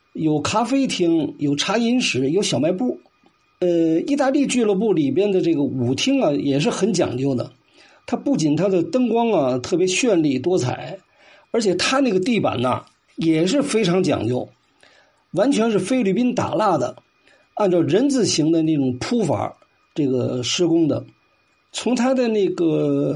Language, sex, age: Chinese, male, 50-69